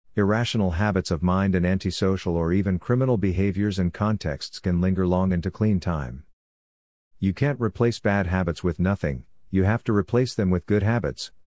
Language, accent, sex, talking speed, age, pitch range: English, American, male, 175 wpm, 50-69, 90-105 Hz